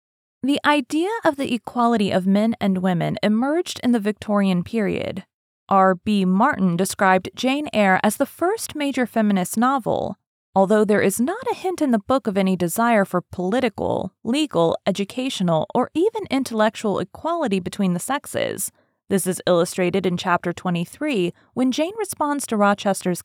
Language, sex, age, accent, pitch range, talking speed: English, female, 30-49, American, 190-295 Hz, 155 wpm